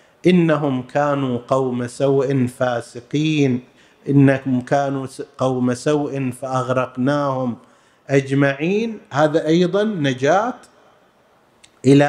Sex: male